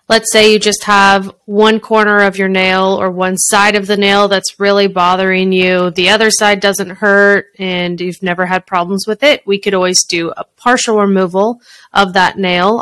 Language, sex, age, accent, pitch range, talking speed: English, female, 20-39, American, 185-215 Hz, 195 wpm